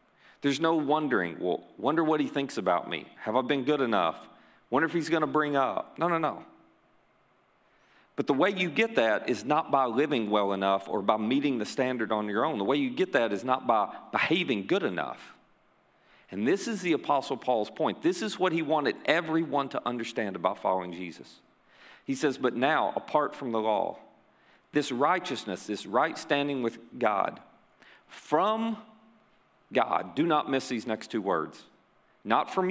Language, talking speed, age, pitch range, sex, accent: English, 185 wpm, 40-59, 115-160 Hz, male, American